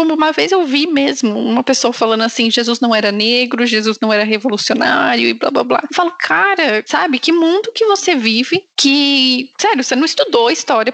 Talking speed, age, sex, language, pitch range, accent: 205 wpm, 10-29, female, Portuguese, 230-290 Hz, Brazilian